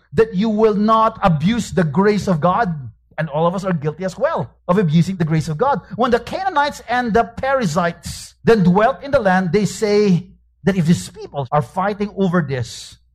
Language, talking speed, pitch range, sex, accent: English, 200 wpm, 140-195 Hz, male, Filipino